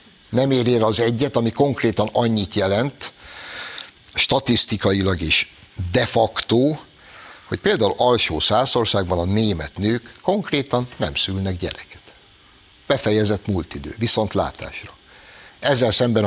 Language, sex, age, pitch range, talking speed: Hungarian, male, 60-79, 95-115 Hz, 105 wpm